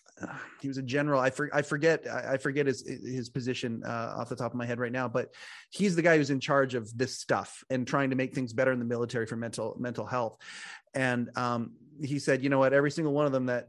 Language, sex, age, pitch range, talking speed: English, male, 30-49, 130-175 Hz, 255 wpm